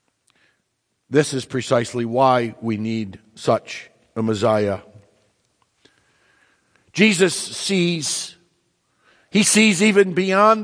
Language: English